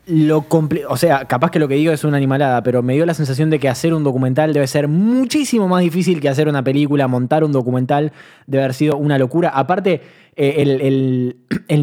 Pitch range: 130-165 Hz